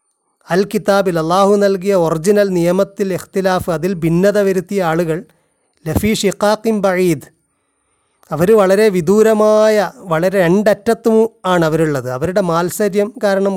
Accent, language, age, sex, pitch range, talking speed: native, Malayalam, 30-49, male, 165-195 Hz, 100 wpm